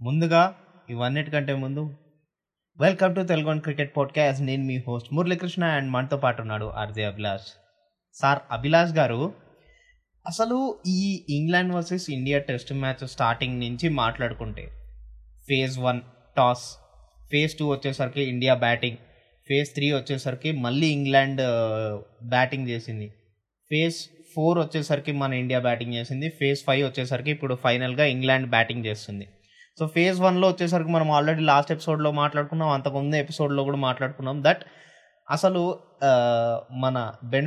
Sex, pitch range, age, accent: male, 125-155 Hz, 20-39, native